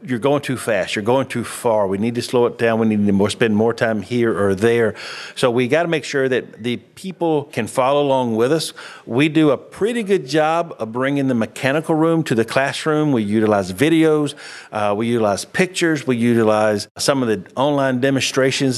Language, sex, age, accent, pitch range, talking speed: English, male, 50-69, American, 115-150 Hz, 210 wpm